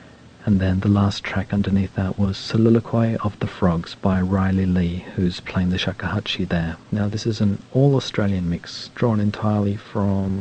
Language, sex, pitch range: English, male, 95-120 Hz